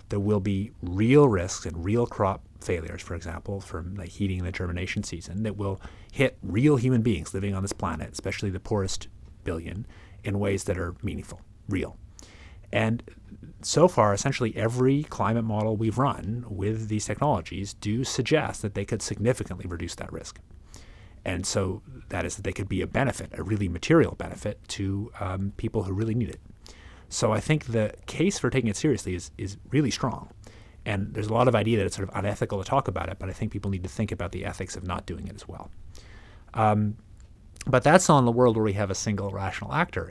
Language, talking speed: English, 205 wpm